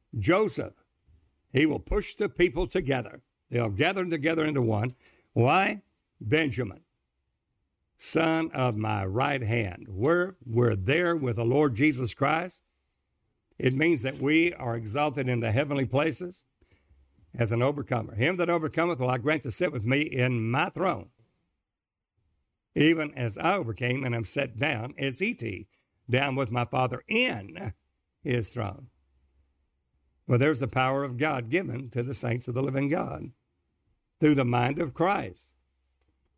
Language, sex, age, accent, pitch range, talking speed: English, male, 60-79, American, 115-155 Hz, 145 wpm